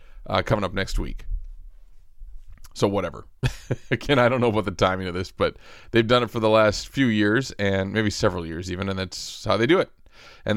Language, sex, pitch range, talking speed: English, male, 100-120 Hz, 210 wpm